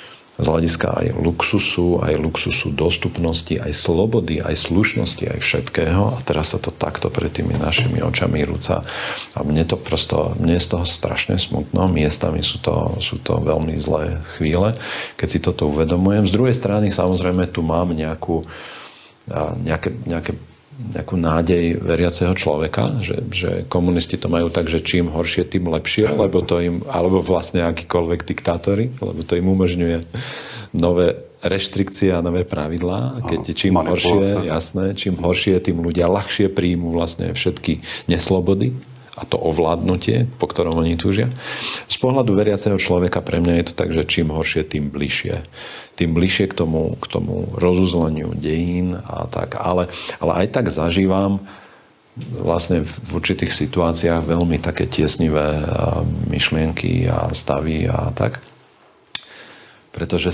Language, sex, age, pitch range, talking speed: Slovak, male, 40-59, 80-100 Hz, 145 wpm